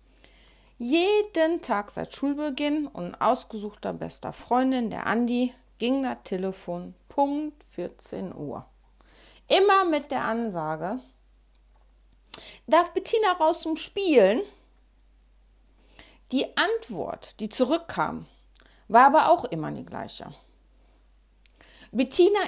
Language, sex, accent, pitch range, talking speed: German, female, German, 200-300 Hz, 95 wpm